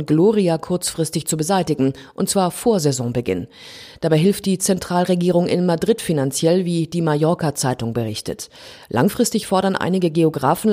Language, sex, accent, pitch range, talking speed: German, female, German, 155-210 Hz, 130 wpm